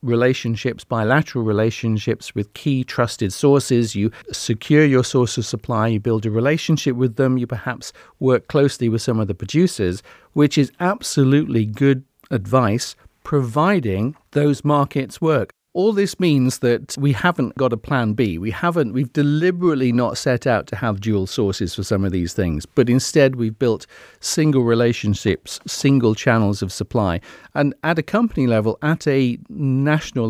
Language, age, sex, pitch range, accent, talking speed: English, 50-69, male, 110-140 Hz, British, 160 wpm